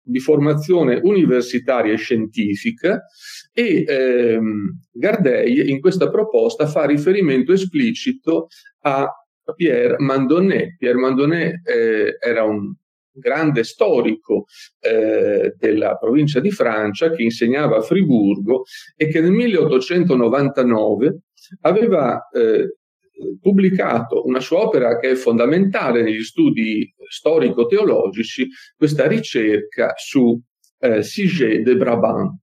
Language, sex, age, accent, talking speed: English, male, 40-59, Italian, 100 wpm